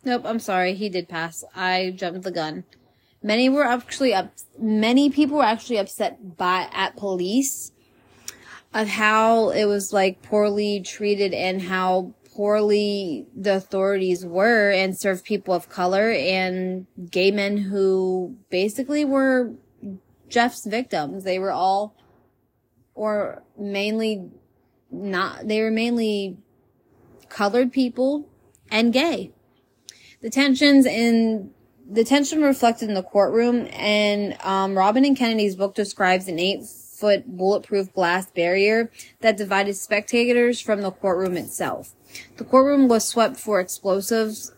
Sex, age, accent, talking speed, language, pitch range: female, 20-39, American, 130 wpm, English, 190-225 Hz